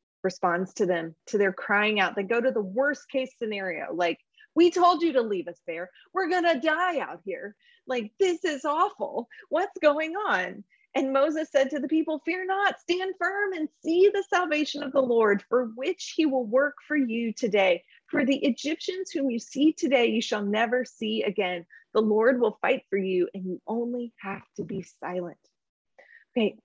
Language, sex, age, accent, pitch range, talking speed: English, female, 30-49, American, 215-335 Hz, 195 wpm